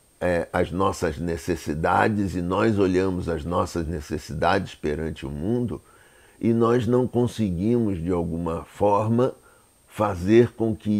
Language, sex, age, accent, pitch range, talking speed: Portuguese, male, 60-79, Brazilian, 85-115 Hz, 120 wpm